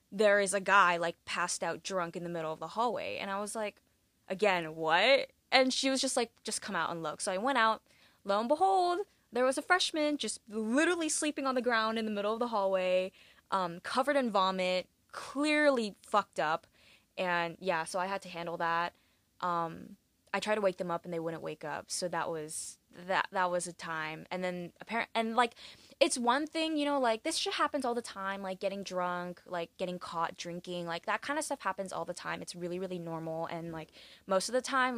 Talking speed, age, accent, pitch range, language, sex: 225 wpm, 10-29, American, 170-235 Hz, English, female